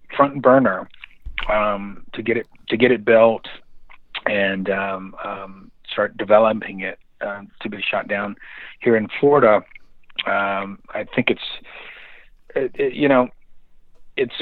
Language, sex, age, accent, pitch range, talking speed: English, male, 40-59, American, 95-115 Hz, 130 wpm